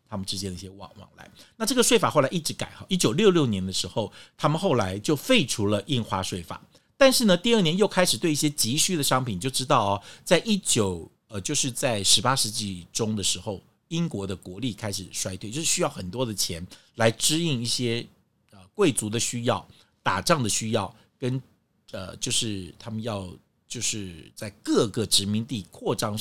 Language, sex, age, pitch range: Chinese, male, 50-69, 100-145 Hz